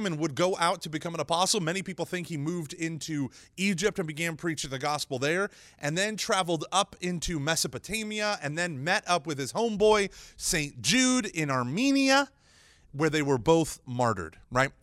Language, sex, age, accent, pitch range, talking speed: English, male, 30-49, American, 130-180 Hz, 180 wpm